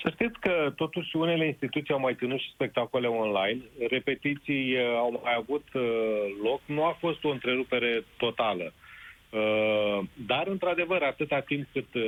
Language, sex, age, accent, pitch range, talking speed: Romanian, male, 30-49, native, 115-145 Hz, 135 wpm